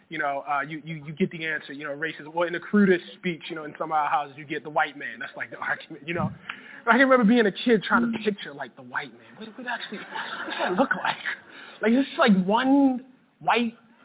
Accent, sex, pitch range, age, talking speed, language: American, male, 185-255 Hz, 20-39, 265 wpm, English